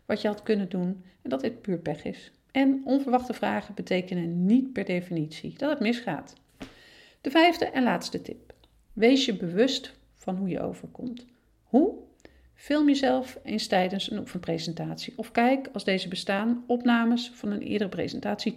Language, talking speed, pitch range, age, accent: Dutch, 160 wpm, 185-245 Hz, 40-59, Dutch